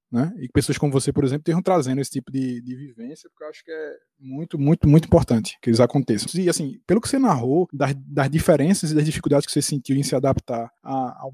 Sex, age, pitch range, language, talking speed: male, 20-39, 135-175 Hz, Portuguese, 250 wpm